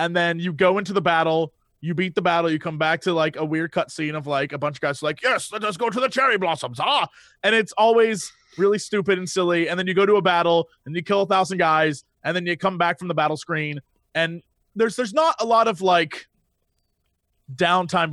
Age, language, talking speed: 20-39, English, 240 wpm